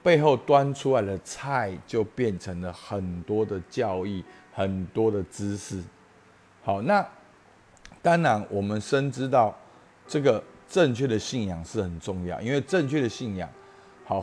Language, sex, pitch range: Chinese, male, 100-135 Hz